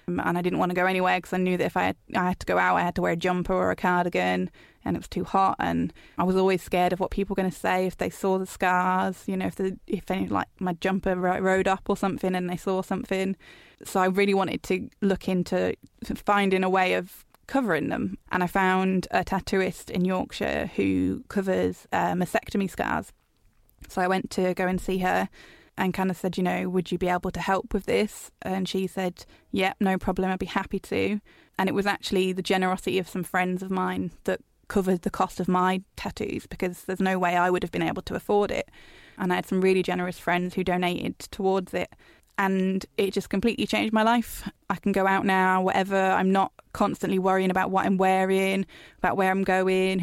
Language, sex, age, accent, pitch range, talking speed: English, female, 20-39, British, 180-195 Hz, 230 wpm